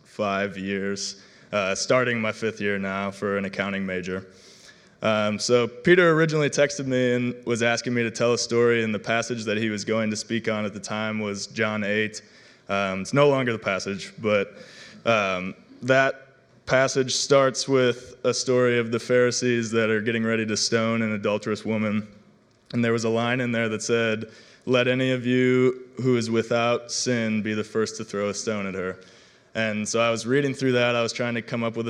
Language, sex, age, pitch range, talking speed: English, male, 20-39, 105-125 Hz, 205 wpm